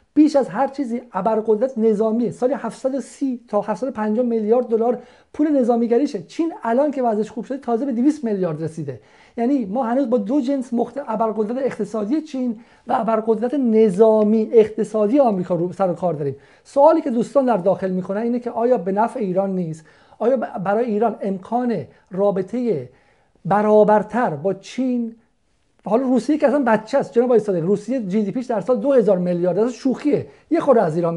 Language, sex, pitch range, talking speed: Persian, male, 200-255 Hz, 170 wpm